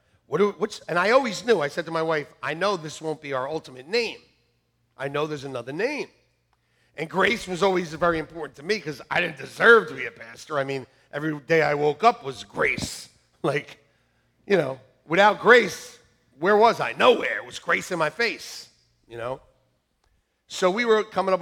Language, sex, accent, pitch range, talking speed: English, male, American, 135-200 Hz, 200 wpm